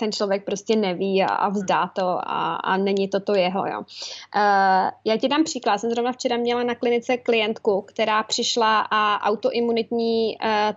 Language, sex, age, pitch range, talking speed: Czech, female, 20-39, 205-235 Hz, 175 wpm